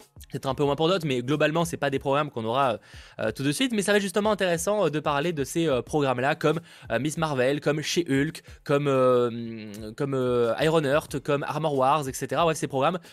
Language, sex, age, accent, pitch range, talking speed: French, male, 20-39, French, 130-170 Hz, 240 wpm